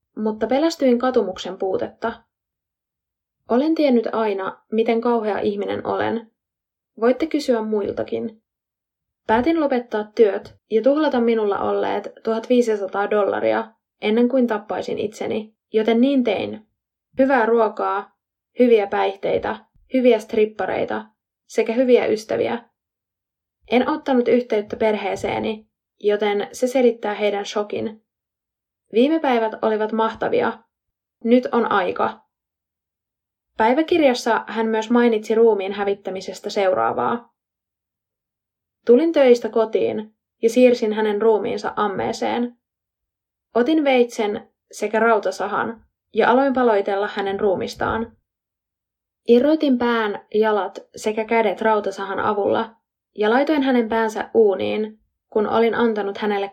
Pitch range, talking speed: 205-240 Hz, 100 wpm